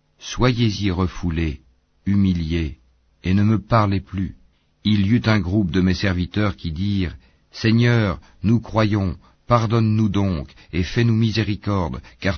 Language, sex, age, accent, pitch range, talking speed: French, male, 50-69, French, 80-105 Hz, 135 wpm